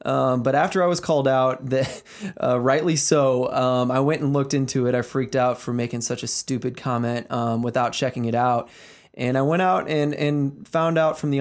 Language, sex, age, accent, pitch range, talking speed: English, male, 20-39, American, 125-145 Hz, 220 wpm